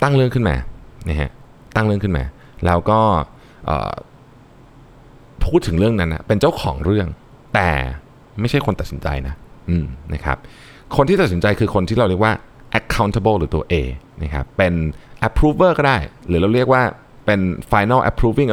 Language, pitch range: Thai, 80-115 Hz